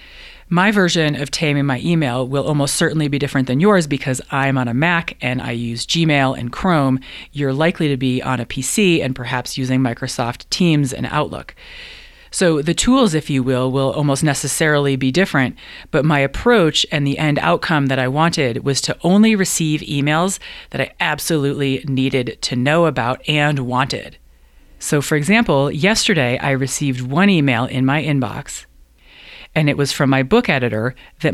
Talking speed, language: 175 wpm, English